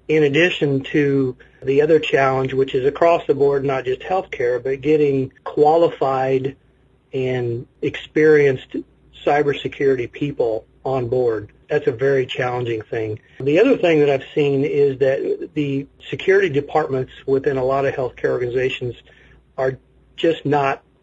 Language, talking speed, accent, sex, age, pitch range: English, 135 wpm, American, male, 40-59, 130-150 Hz